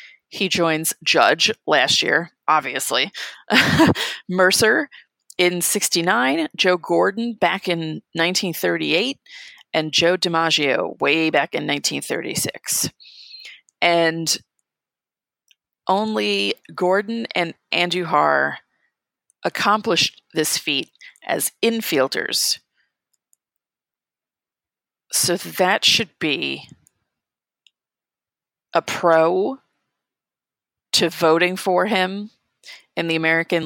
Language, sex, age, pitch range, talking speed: English, female, 30-49, 160-195 Hz, 80 wpm